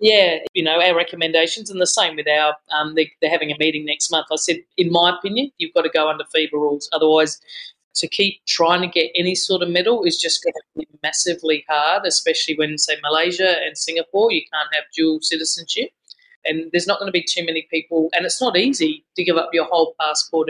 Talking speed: 225 wpm